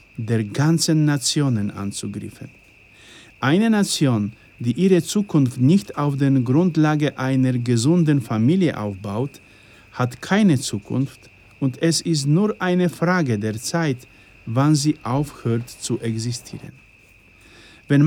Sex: male